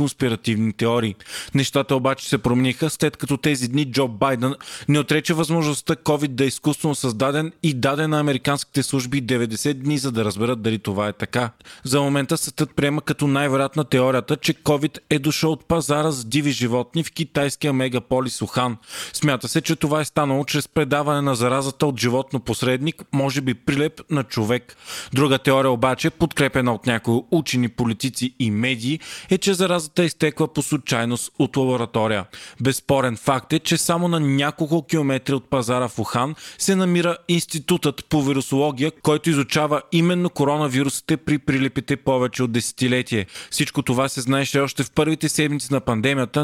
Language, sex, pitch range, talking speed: Bulgarian, male, 130-150 Hz, 160 wpm